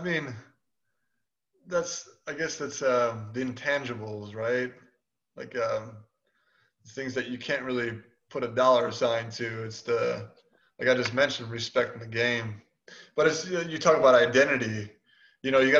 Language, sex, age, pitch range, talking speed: English, male, 20-39, 120-145 Hz, 165 wpm